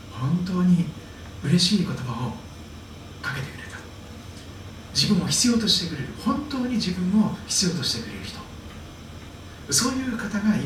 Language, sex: Japanese, male